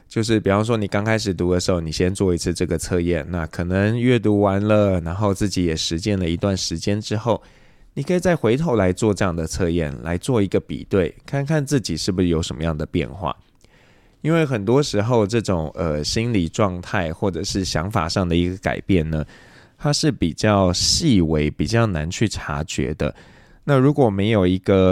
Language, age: Chinese, 20-39